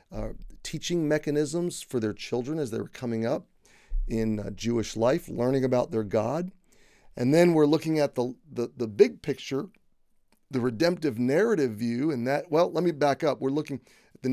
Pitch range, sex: 115-145 Hz, male